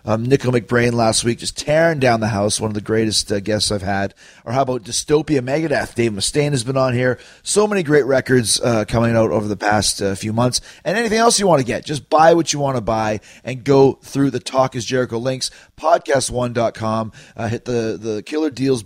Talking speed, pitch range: 230 wpm, 115-145 Hz